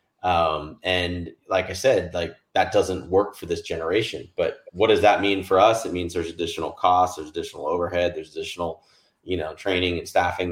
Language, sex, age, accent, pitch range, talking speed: English, male, 30-49, American, 85-95 Hz, 195 wpm